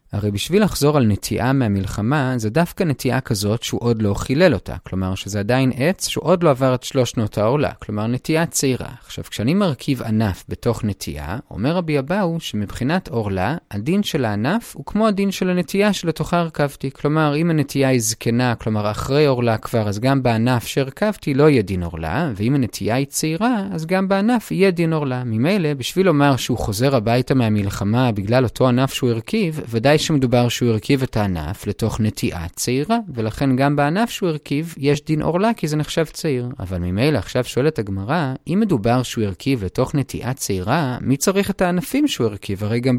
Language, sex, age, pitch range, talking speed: Hebrew, male, 30-49, 115-175 Hz, 170 wpm